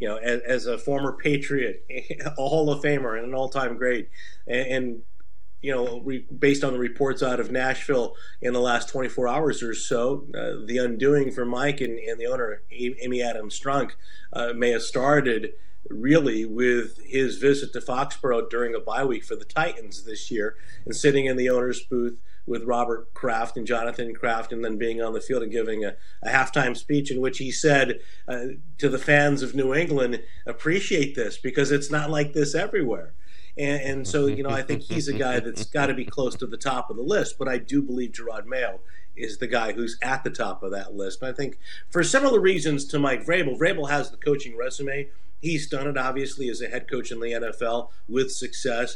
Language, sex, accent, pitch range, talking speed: English, male, American, 120-145 Hz, 210 wpm